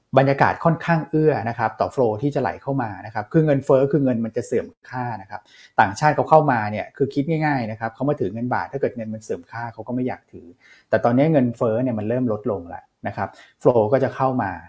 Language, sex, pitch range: Thai, male, 110-135 Hz